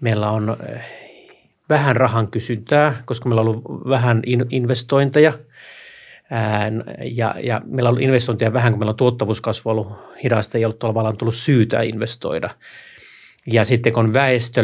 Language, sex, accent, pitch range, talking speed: Finnish, male, native, 110-120 Hz, 135 wpm